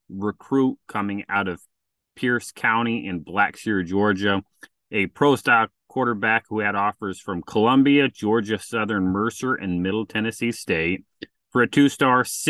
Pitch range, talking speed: 95-115 Hz, 130 wpm